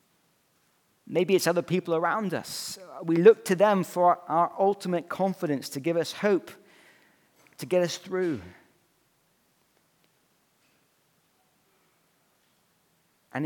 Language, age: English, 40-59